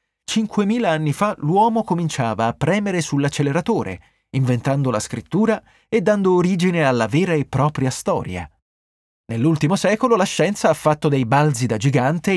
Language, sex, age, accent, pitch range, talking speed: Italian, male, 30-49, native, 125-195 Hz, 135 wpm